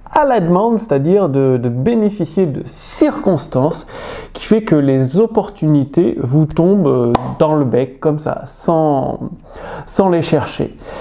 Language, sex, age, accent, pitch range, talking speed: French, male, 30-49, French, 160-235 Hz, 145 wpm